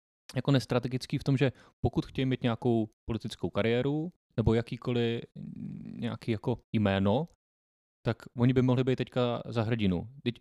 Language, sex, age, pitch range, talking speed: Czech, male, 20-39, 105-125 Hz, 145 wpm